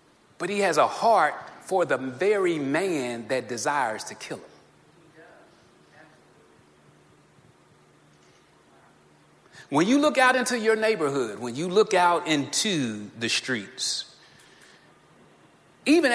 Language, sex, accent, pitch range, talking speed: English, male, American, 145-235 Hz, 110 wpm